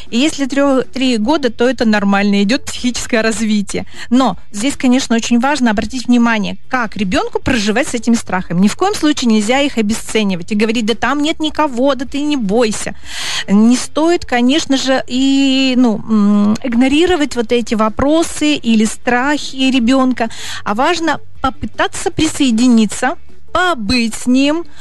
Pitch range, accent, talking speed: 225-275 Hz, native, 150 wpm